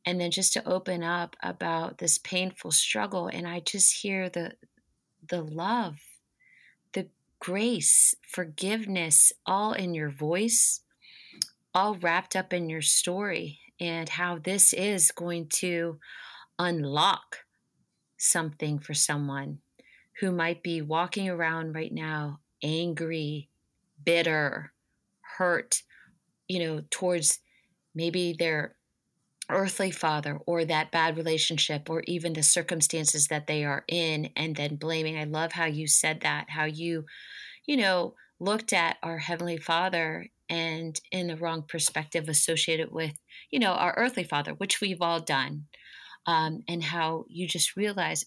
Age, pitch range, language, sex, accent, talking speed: 30-49, 155-185 Hz, English, female, American, 135 wpm